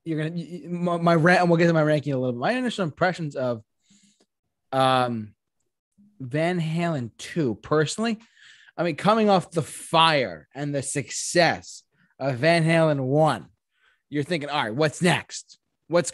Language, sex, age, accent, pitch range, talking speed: English, male, 20-39, American, 130-180 Hz, 160 wpm